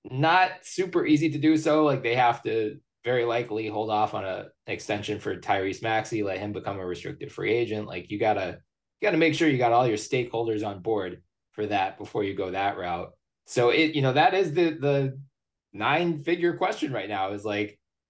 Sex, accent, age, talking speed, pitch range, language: male, American, 20-39, 210 wpm, 95-130 Hz, English